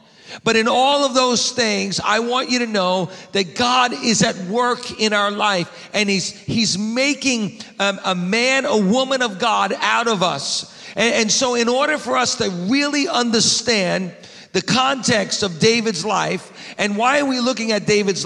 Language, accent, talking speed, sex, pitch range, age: English, American, 180 wpm, male, 195-245 Hz, 40-59